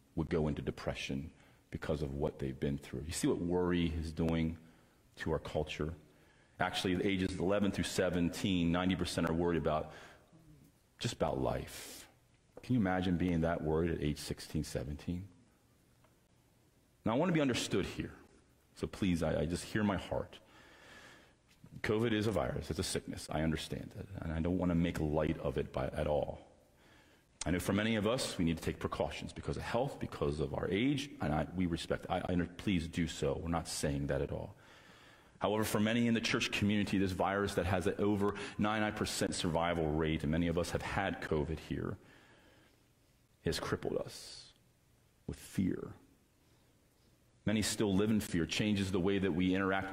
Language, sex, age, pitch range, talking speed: English, male, 40-59, 80-100 Hz, 185 wpm